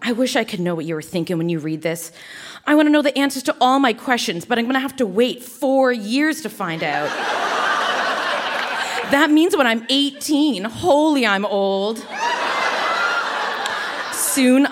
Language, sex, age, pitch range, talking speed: English, female, 30-49, 195-280 Hz, 170 wpm